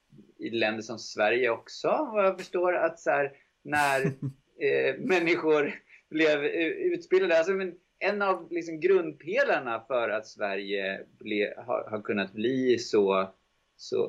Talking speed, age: 130 wpm, 30-49